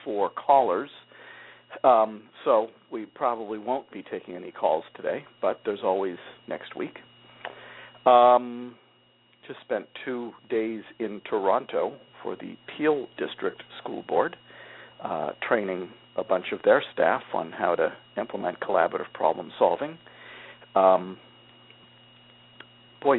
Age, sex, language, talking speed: 50-69, male, English, 120 wpm